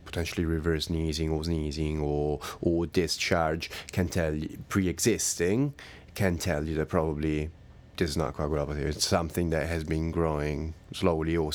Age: 30-49